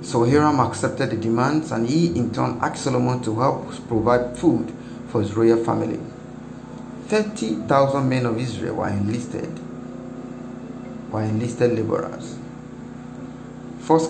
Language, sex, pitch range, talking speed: English, male, 115-150 Hz, 130 wpm